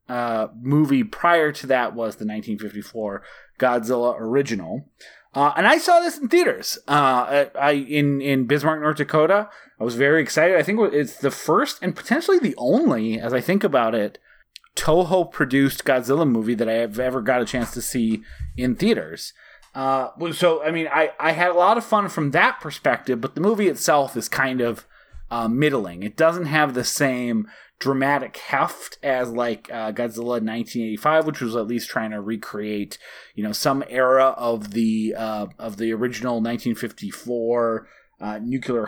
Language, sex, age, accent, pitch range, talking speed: English, male, 30-49, American, 115-155 Hz, 175 wpm